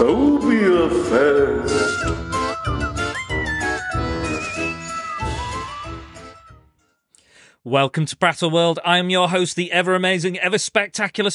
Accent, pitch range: British, 115-160 Hz